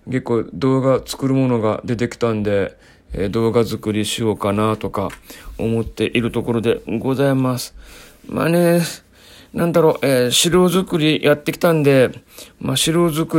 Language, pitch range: Japanese, 110-135 Hz